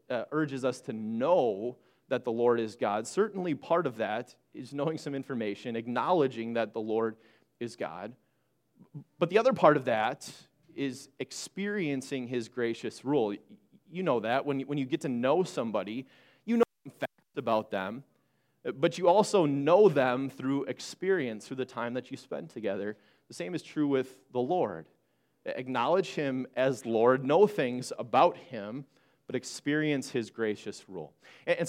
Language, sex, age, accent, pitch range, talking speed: English, male, 30-49, American, 120-155 Hz, 165 wpm